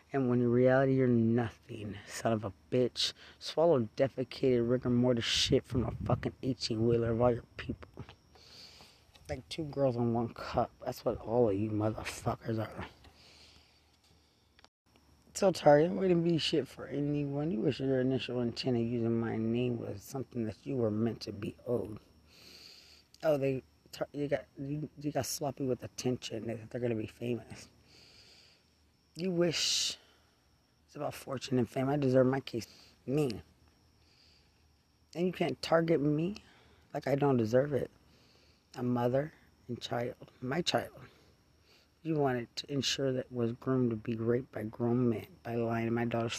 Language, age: English, 20-39